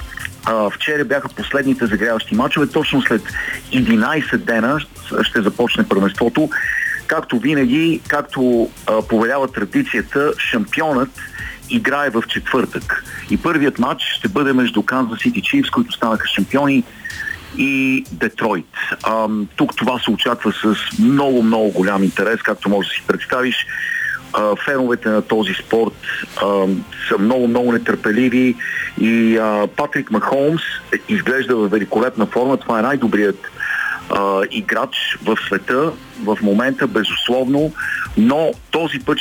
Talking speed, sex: 125 wpm, male